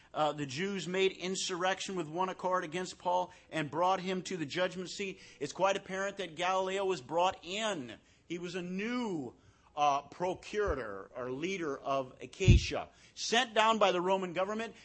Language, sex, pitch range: English, male, 145-210 Hz